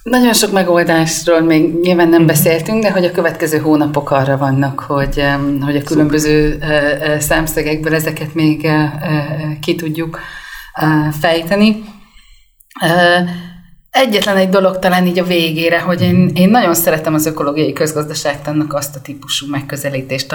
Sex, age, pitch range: female, 30-49, 145-185 Hz